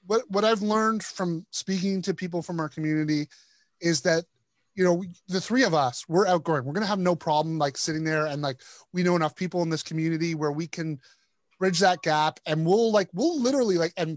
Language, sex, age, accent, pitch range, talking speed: English, male, 30-49, American, 155-200 Hz, 225 wpm